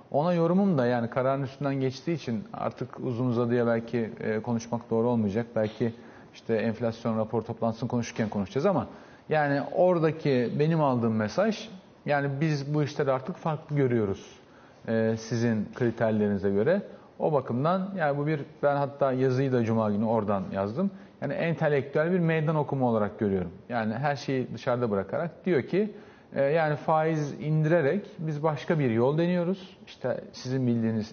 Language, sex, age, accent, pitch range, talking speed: Turkish, male, 40-59, native, 115-160 Hz, 145 wpm